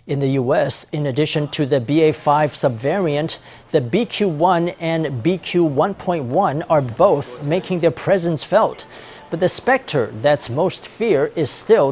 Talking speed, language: 135 wpm, English